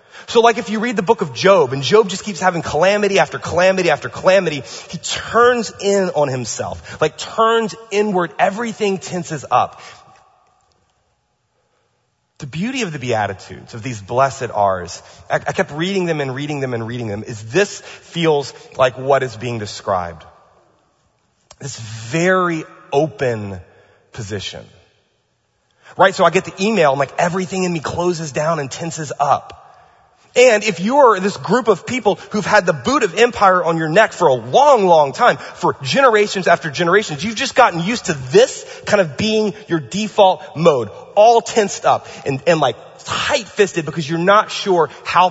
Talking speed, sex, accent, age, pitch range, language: 170 wpm, male, American, 30-49, 140-210 Hz, English